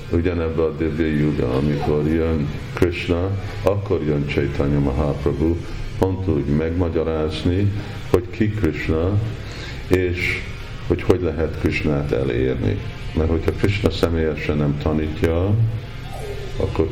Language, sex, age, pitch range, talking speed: Hungarian, male, 50-69, 75-105 Hz, 105 wpm